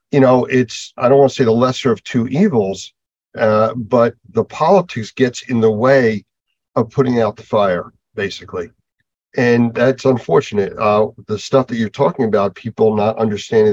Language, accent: English, American